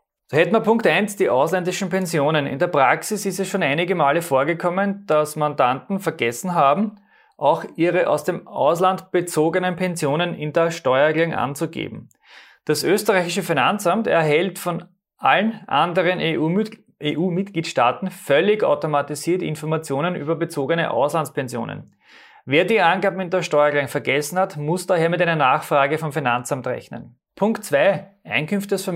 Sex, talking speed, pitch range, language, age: male, 135 wpm, 150-195 Hz, German, 30-49